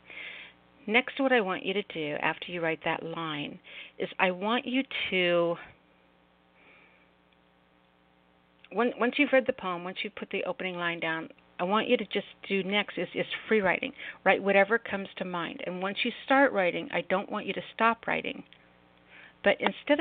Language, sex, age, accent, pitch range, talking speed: English, female, 50-69, American, 150-205 Hz, 175 wpm